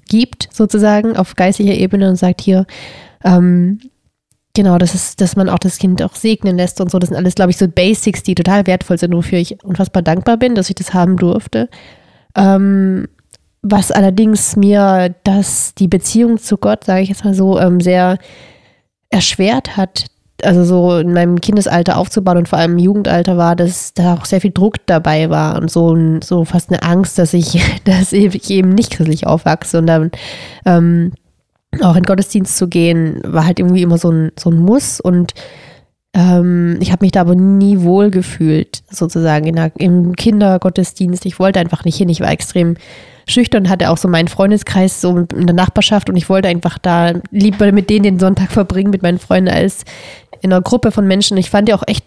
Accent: German